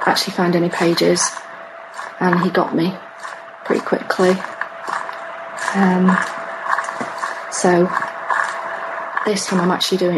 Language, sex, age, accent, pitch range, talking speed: English, female, 30-49, British, 180-215 Hz, 100 wpm